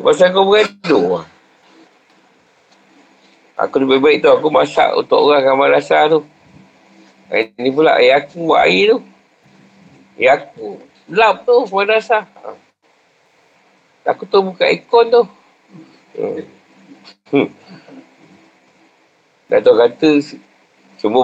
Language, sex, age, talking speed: Malay, male, 60-79, 115 wpm